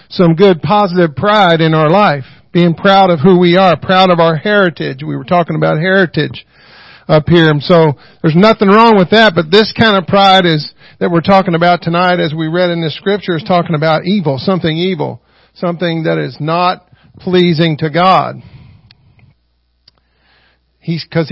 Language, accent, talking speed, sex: English, American, 175 wpm, male